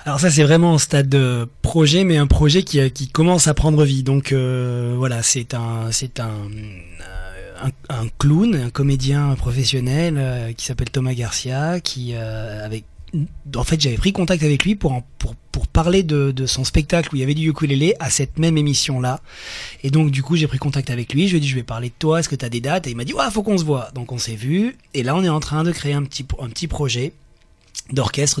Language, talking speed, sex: French, 245 wpm, male